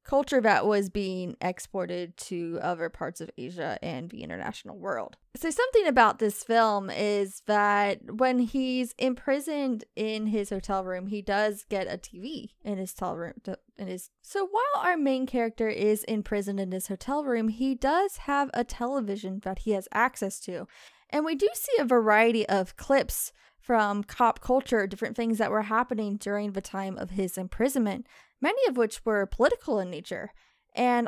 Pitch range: 205-270 Hz